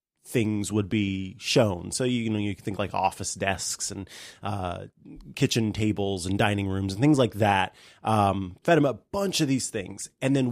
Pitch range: 105-125 Hz